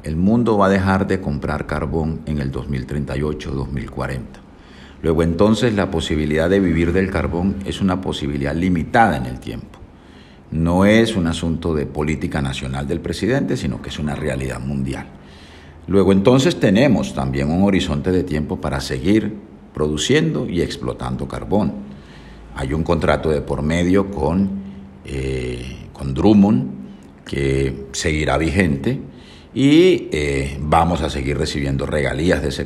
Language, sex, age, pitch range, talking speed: English, male, 50-69, 70-95 Hz, 145 wpm